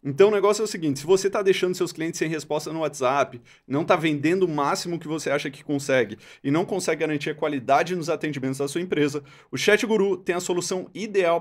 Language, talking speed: Portuguese, 225 wpm